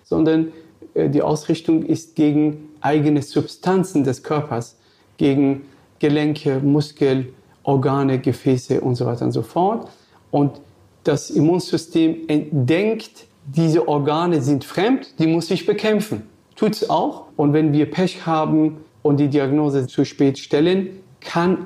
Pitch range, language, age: 145-175 Hz, German, 40-59